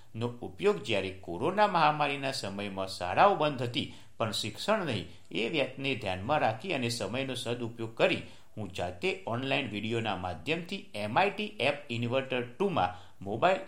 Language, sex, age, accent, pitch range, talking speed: Gujarati, male, 60-79, native, 95-150 Hz, 135 wpm